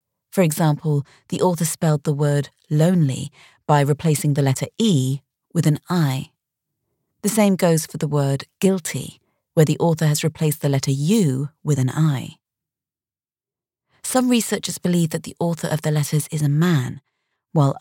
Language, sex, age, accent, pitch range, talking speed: English, female, 30-49, British, 150-190 Hz, 160 wpm